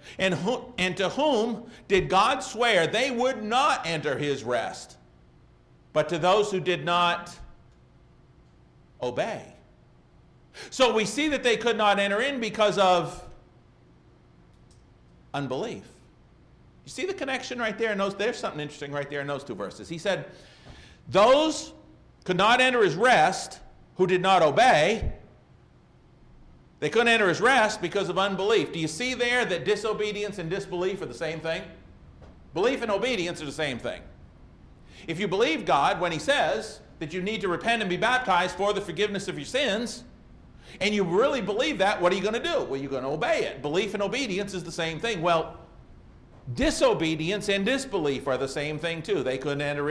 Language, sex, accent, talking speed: English, male, American, 170 wpm